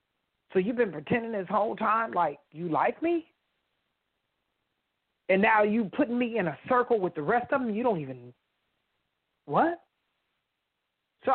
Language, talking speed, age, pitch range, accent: English, 155 wpm, 40-59, 205-265 Hz, American